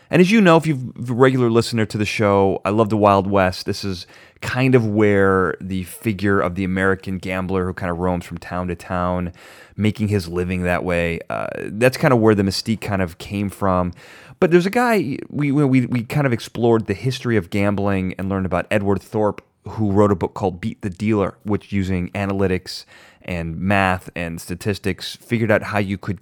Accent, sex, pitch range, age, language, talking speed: American, male, 95-110 Hz, 30-49, English, 210 wpm